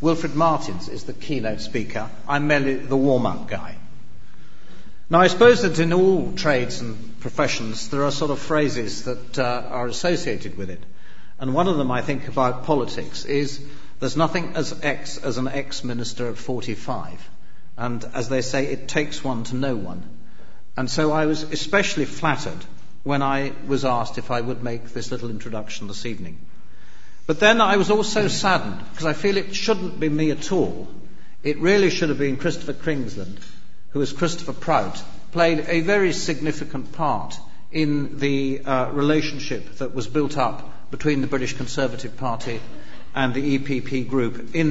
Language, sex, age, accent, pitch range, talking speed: English, male, 50-69, British, 115-150 Hz, 170 wpm